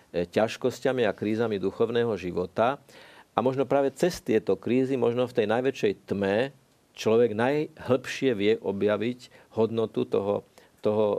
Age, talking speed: 50-69, 125 wpm